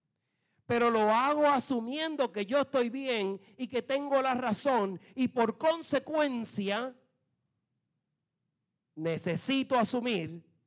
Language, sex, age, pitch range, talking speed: Spanish, male, 40-59, 140-215 Hz, 100 wpm